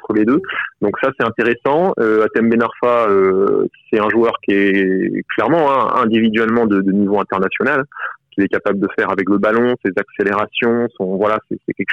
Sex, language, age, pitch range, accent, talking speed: male, French, 20-39, 100-125 Hz, French, 180 wpm